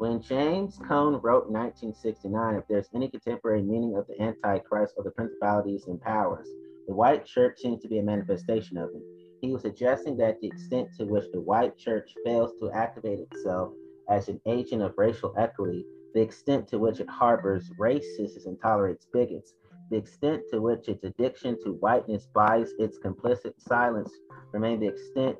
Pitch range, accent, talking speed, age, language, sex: 95-120 Hz, American, 175 wpm, 30-49, English, male